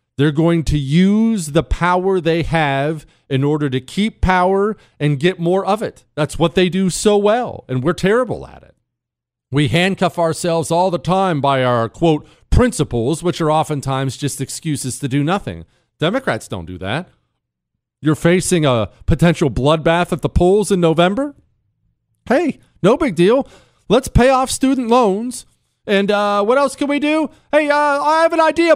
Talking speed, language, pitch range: 175 wpm, English, 140-205 Hz